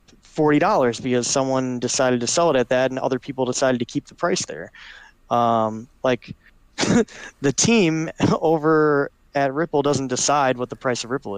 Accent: American